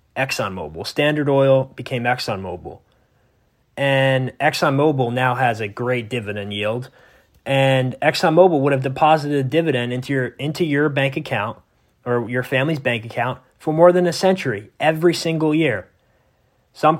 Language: English